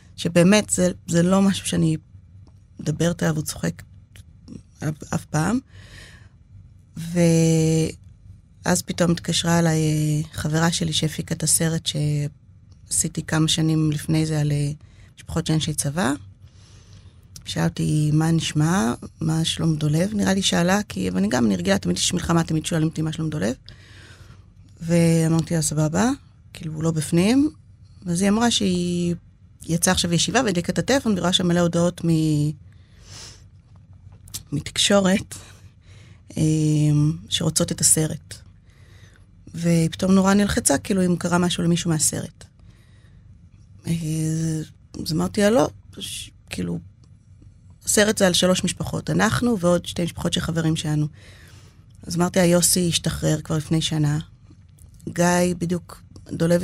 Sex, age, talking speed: female, 30-49, 120 wpm